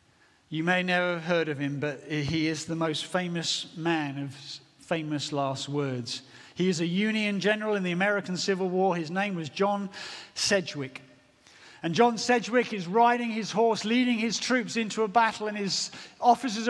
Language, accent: English, British